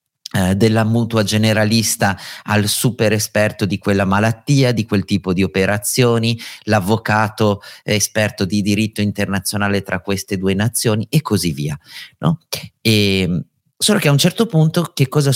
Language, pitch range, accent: Italian, 95-130 Hz, native